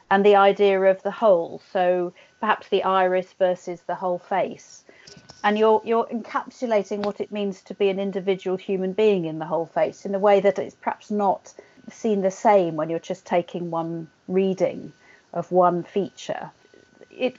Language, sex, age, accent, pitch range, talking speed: English, female, 40-59, British, 175-210 Hz, 175 wpm